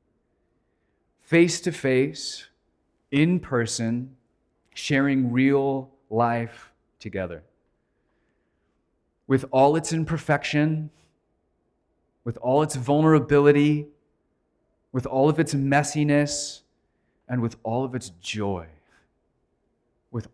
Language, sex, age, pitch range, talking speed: English, male, 30-49, 115-145 Hz, 85 wpm